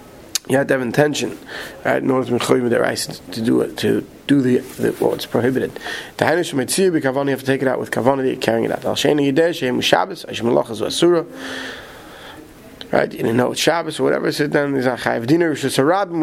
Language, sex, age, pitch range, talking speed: English, male, 30-49, 140-185 Hz, 230 wpm